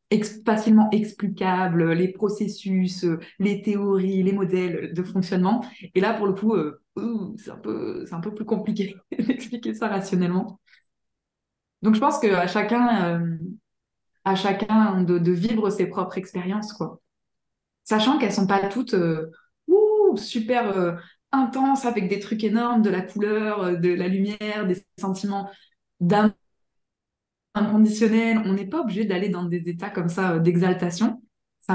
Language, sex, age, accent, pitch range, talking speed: French, female, 20-39, French, 180-215 Hz, 155 wpm